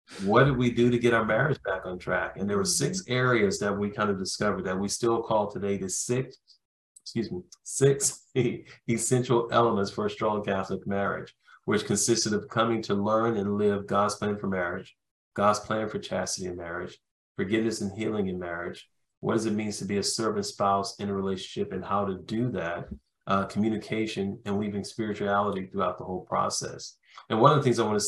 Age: 40-59